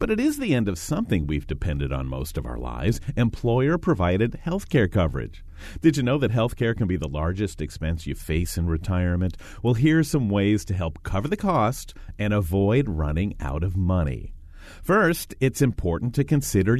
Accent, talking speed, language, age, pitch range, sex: American, 195 wpm, English, 40-59, 85-125 Hz, male